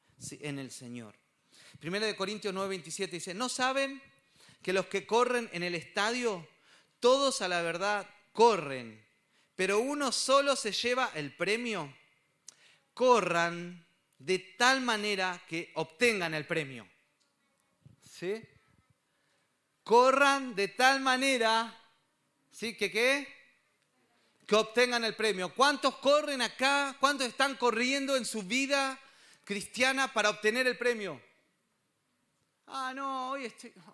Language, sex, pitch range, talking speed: Spanish, male, 175-255 Hz, 125 wpm